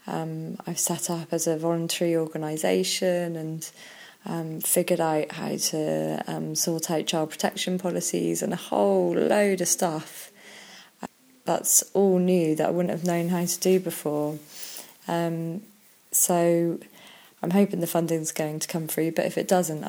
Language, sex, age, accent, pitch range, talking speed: English, female, 20-39, British, 160-180 Hz, 155 wpm